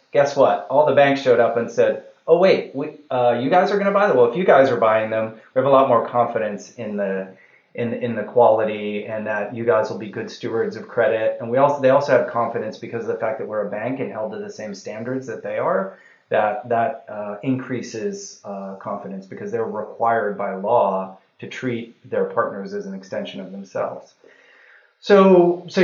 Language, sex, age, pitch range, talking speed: English, male, 30-49, 115-150 Hz, 220 wpm